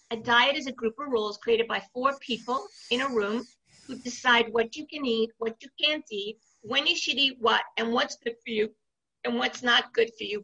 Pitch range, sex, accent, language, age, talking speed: 220-270 Hz, female, American, English, 50-69, 230 wpm